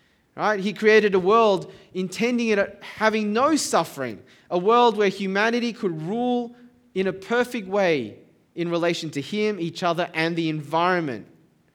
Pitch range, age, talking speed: 180-225 Hz, 20-39, 155 wpm